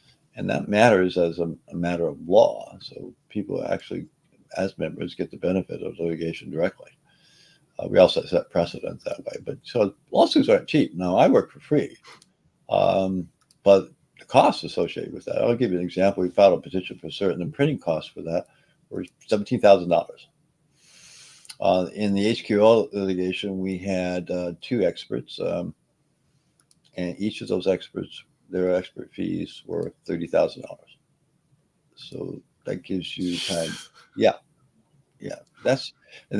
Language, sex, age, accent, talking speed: English, male, 60-79, American, 150 wpm